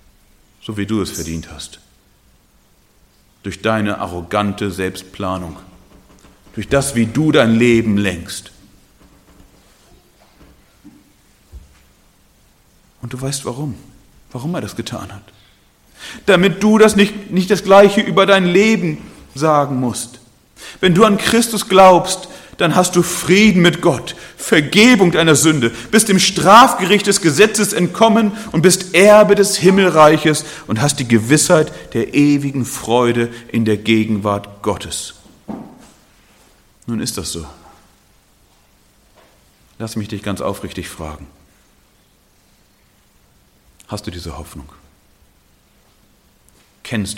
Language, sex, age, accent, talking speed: German, male, 40-59, German, 115 wpm